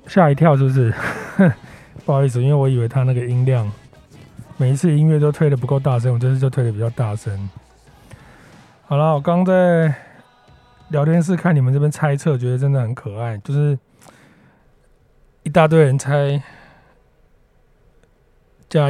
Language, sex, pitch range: Chinese, male, 120-155 Hz